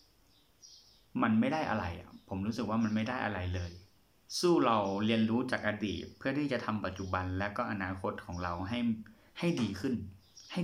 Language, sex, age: Thai, male, 30-49